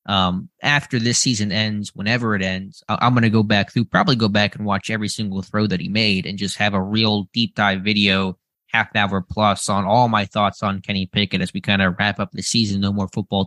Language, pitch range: English, 100-115 Hz